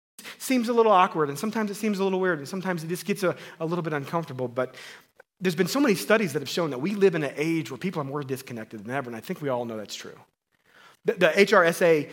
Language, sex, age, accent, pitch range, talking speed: English, male, 30-49, American, 140-190 Hz, 265 wpm